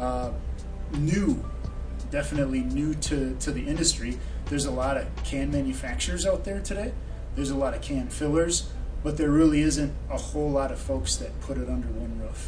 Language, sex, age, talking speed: English, male, 30-49, 185 wpm